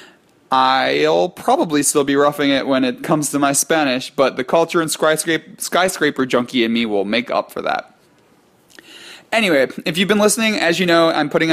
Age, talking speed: 30-49, 190 wpm